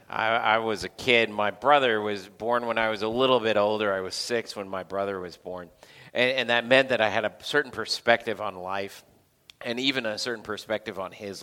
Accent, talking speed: American, 225 wpm